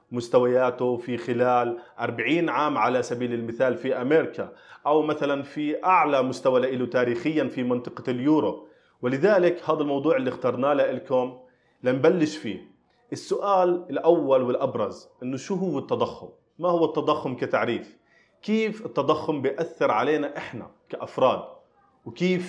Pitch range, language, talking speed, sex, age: 125-155 Hz, Arabic, 125 wpm, male, 30-49